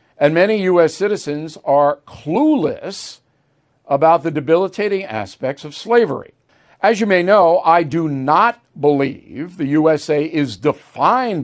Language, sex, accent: English, male, American